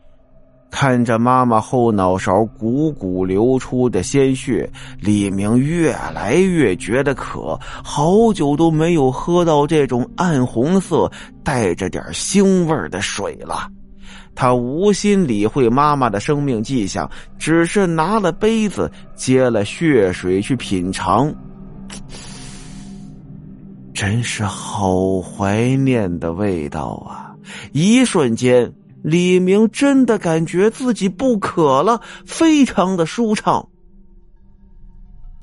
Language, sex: Chinese, male